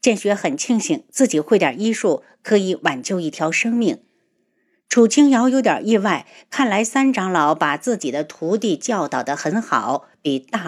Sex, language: female, Chinese